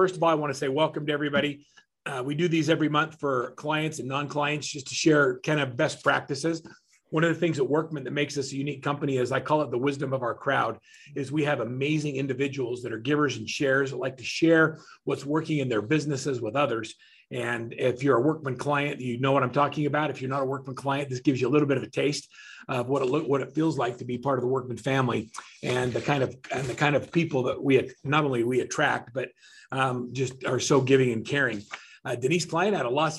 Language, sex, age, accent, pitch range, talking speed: English, male, 40-59, American, 135-160 Hz, 255 wpm